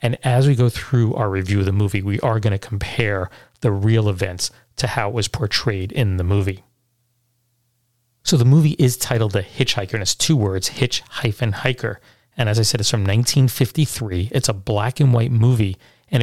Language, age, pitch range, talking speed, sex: English, 30-49, 105-125 Hz, 190 wpm, male